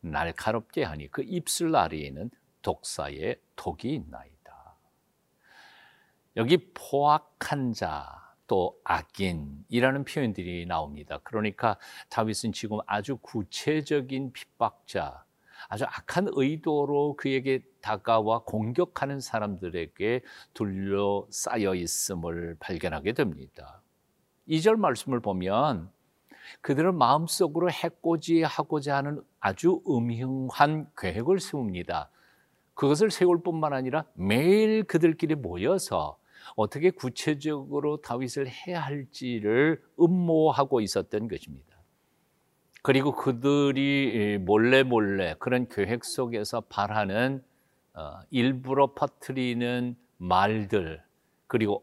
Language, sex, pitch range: Korean, male, 110-155 Hz